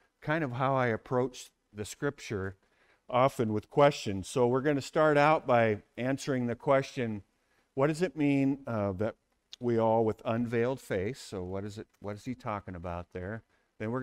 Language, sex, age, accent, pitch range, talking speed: English, male, 50-69, American, 100-130 Hz, 175 wpm